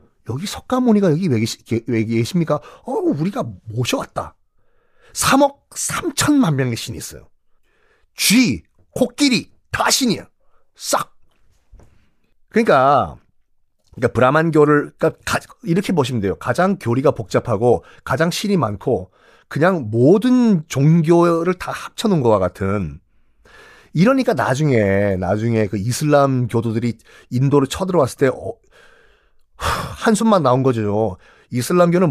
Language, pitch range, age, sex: Korean, 110-185 Hz, 40-59, male